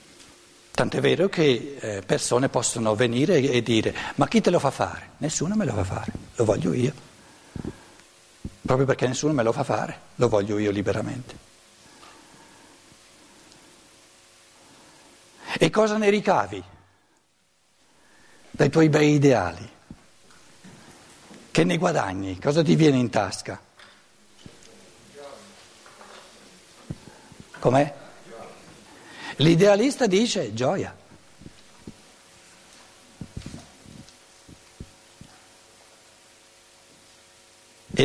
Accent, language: native, Italian